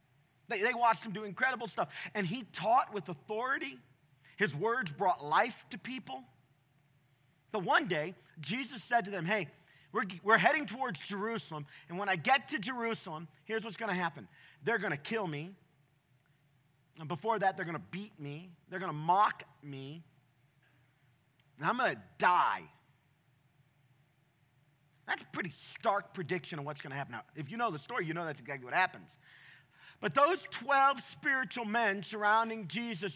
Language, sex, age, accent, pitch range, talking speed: English, male, 40-59, American, 145-225 Hz, 155 wpm